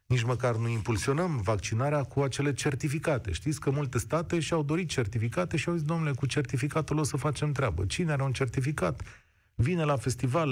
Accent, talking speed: native, 185 wpm